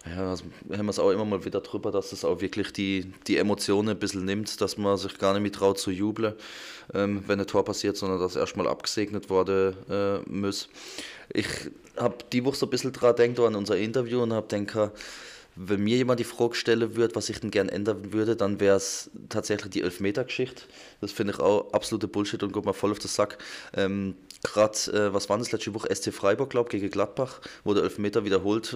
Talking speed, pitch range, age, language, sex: 225 wpm, 100-115 Hz, 20-39, German, male